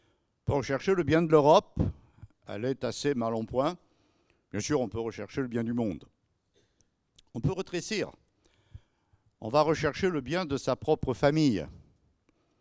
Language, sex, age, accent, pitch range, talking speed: French, male, 60-79, French, 120-175 Hz, 150 wpm